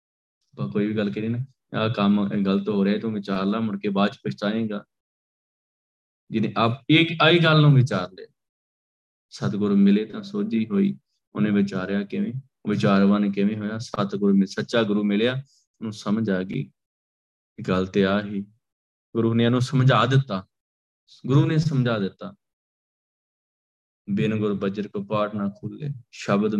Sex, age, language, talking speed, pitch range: male, 20-39, Punjabi, 150 wpm, 100-135 Hz